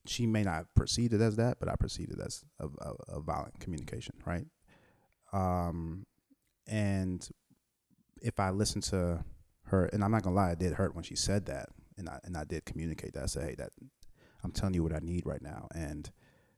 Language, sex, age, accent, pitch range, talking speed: English, male, 30-49, American, 85-105 Hz, 215 wpm